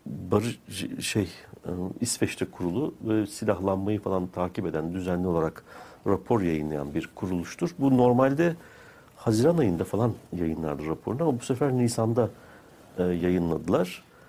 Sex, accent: male, native